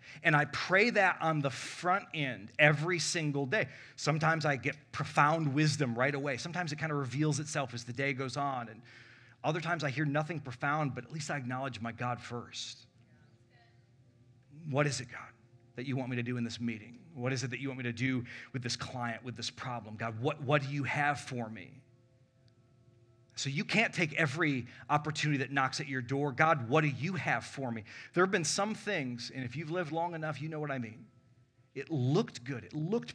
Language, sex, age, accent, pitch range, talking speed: English, male, 30-49, American, 120-150 Hz, 215 wpm